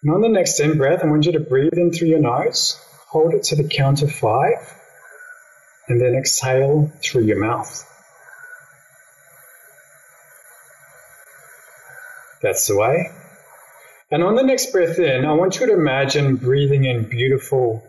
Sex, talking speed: male, 150 wpm